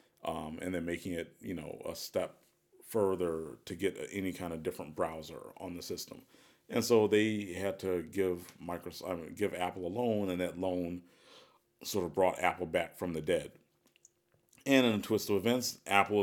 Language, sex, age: English, male, 40-59